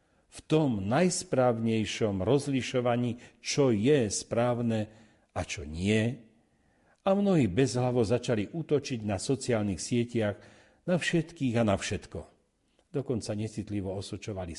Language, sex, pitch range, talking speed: Slovak, male, 95-135 Hz, 105 wpm